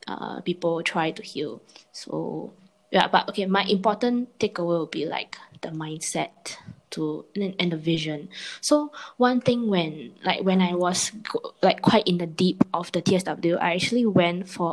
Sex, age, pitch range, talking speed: female, 20-39, 165-205 Hz, 170 wpm